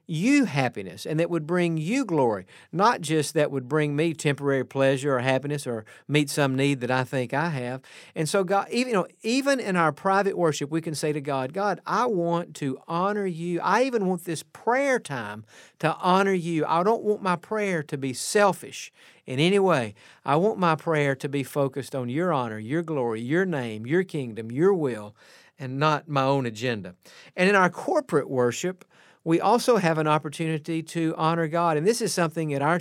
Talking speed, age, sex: 205 wpm, 50-69, male